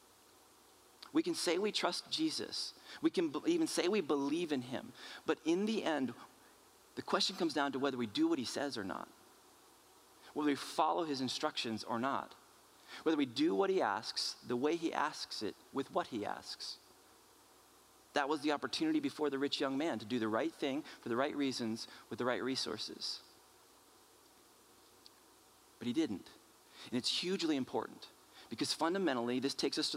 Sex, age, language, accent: male, 30-49, English, American